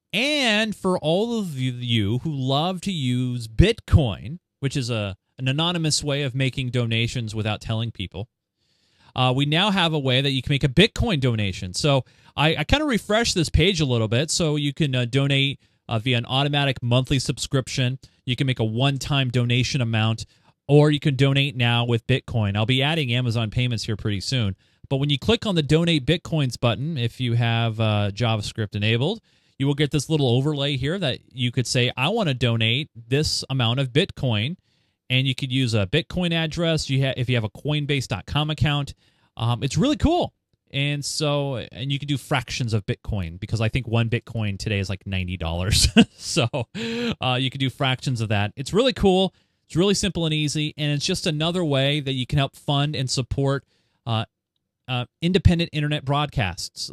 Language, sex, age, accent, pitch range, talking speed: English, male, 30-49, American, 115-150 Hz, 195 wpm